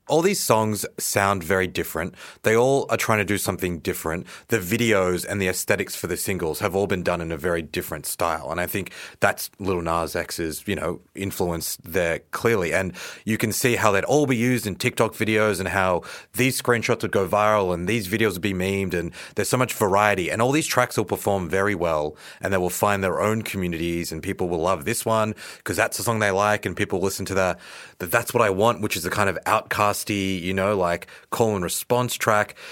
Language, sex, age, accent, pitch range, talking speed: English, male, 30-49, Australian, 95-120 Hz, 220 wpm